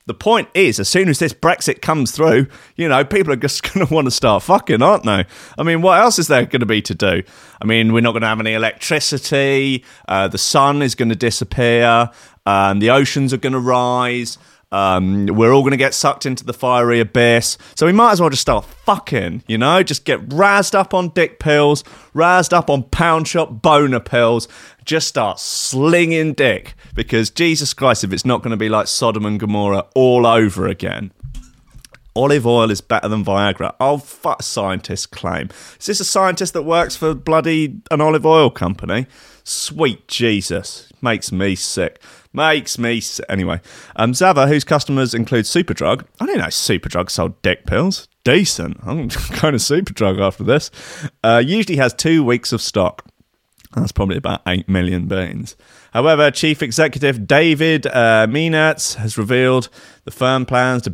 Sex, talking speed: male, 185 wpm